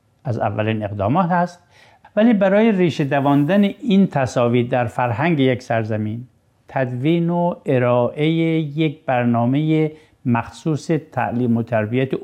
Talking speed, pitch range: 115 wpm, 115-150 Hz